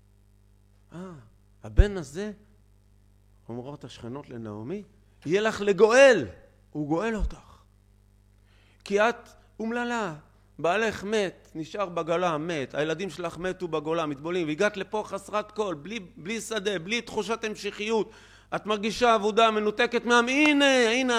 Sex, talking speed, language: male, 120 wpm, Hebrew